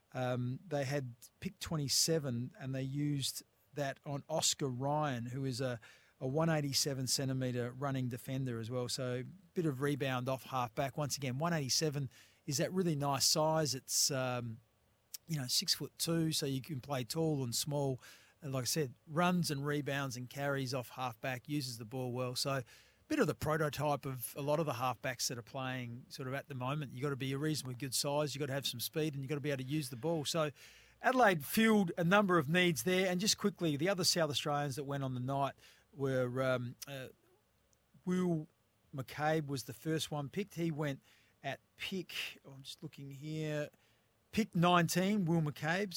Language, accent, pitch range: English, Australian, 130-155 Hz